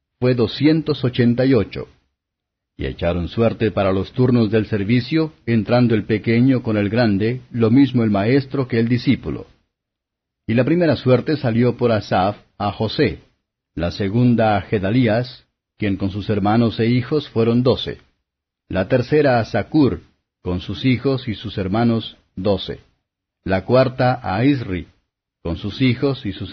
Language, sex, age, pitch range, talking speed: Spanish, male, 50-69, 95-125 Hz, 145 wpm